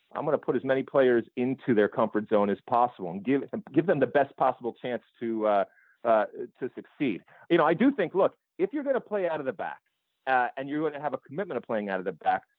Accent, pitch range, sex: American, 125-175 Hz, male